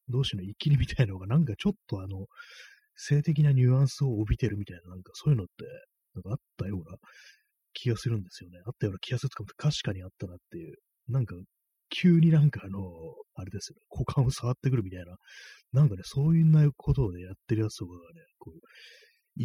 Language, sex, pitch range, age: Japanese, male, 95-140 Hz, 30-49